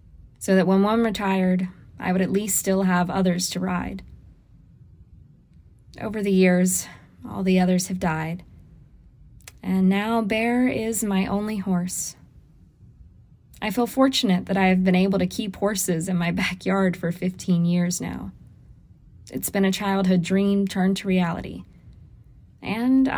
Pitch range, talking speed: 180-205 Hz, 145 wpm